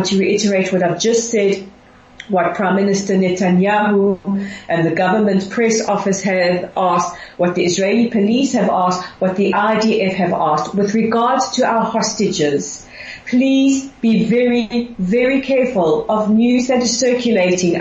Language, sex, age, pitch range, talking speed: English, female, 40-59, 190-235 Hz, 145 wpm